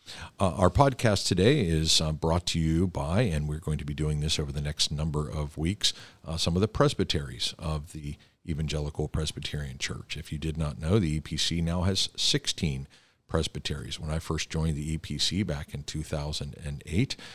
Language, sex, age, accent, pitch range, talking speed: English, male, 50-69, American, 75-90 Hz, 185 wpm